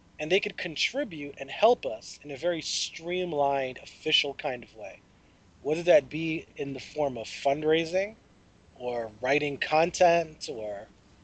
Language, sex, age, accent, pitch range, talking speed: English, male, 30-49, American, 130-175 Hz, 145 wpm